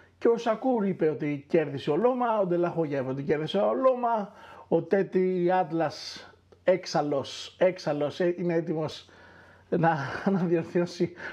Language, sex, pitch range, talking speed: Greek, male, 165-240 Hz, 120 wpm